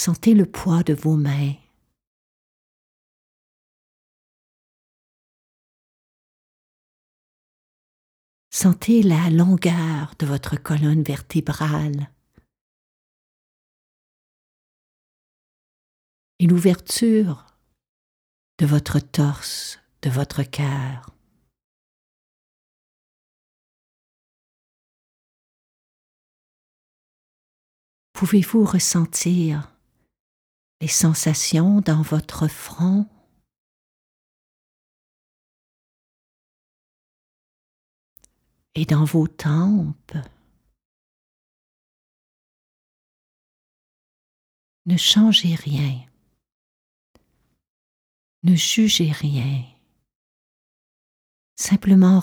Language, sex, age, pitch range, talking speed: French, female, 50-69, 140-175 Hz, 45 wpm